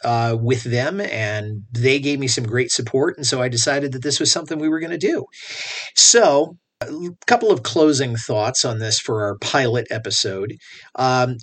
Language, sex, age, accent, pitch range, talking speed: English, male, 40-59, American, 115-140 Hz, 190 wpm